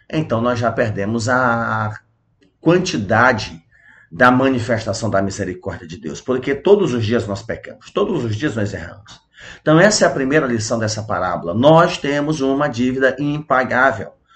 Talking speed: 150 wpm